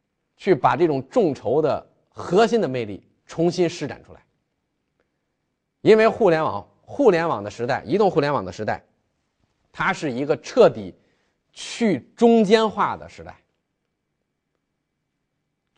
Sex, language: male, Chinese